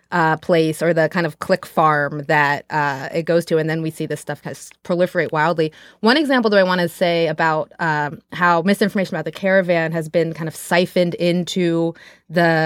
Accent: American